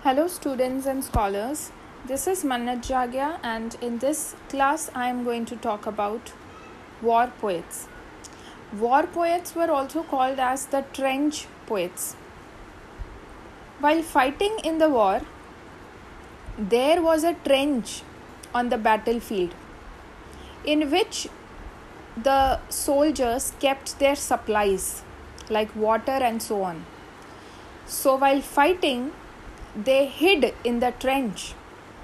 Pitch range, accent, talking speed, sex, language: 230-285 Hz, Indian, 115 wpm, female, English